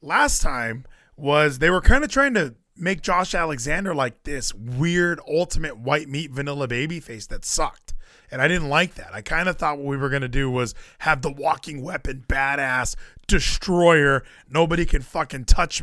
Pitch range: 140-190 Hz